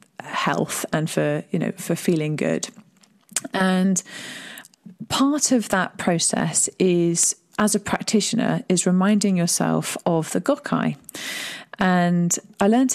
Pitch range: 170-210 Hz